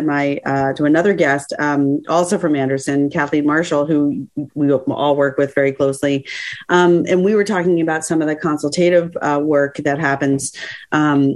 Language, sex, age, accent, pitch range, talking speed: English, female, 40-59, American, 145-180 Hz, 175 wpm